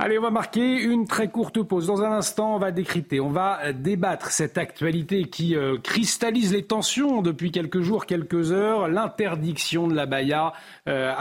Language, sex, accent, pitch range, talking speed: French, male, French, 120-180 Hz, 180 wpm